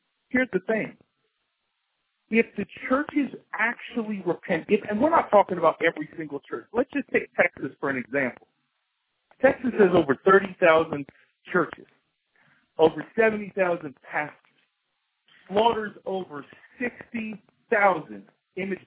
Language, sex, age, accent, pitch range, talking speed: English, male, 50-69, American, 170-230 Hz, 110 wpm